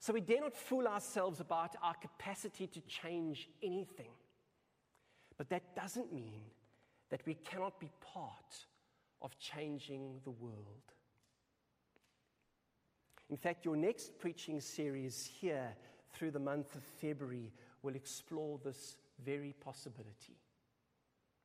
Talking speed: 120 wpm